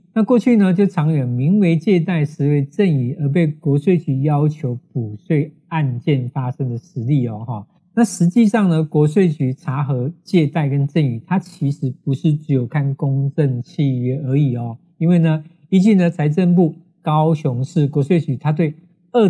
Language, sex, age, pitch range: Chinese, male, 50-69, 140-180 Hz